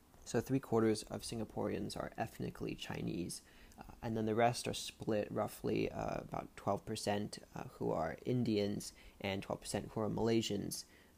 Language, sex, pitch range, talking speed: English, male, 100-115 Hz, 145 wpm